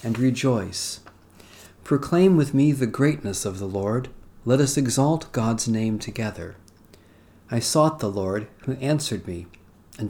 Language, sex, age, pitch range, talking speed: English, male, 40-59, 100-135 Hz, 145 wpm